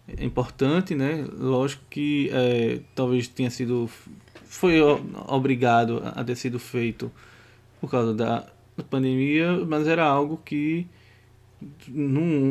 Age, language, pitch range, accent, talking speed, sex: 20-39, Portuguese, 115-145 Hz, Brazilian, 105 wpm, male